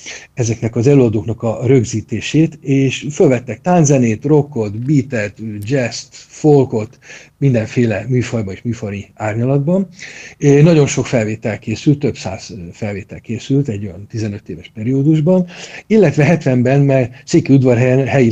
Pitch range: 110-145 Hz